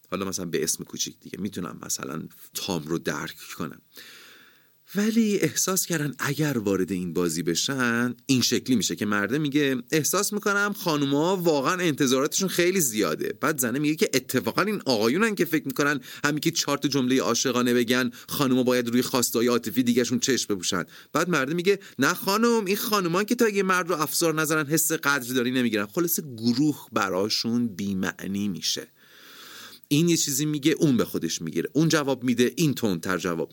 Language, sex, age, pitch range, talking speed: Persian, male, 30-49, 115-155 Hz, 170 wpm